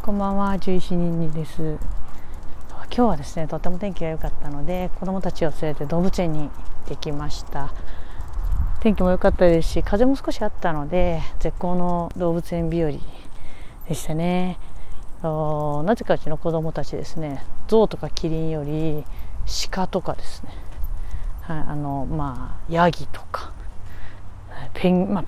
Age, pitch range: 30-49, 130-180 Hz